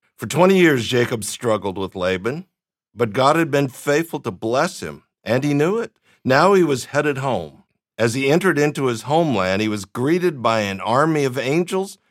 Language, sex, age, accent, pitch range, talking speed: English, male, 50-69, American, 120-170 Hz, 190 wpm